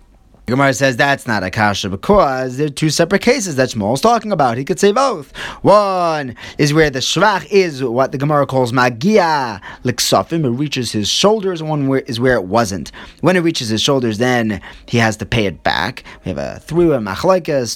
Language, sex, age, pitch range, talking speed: English, male, 30-49, 110-165 Hz, 205 wpm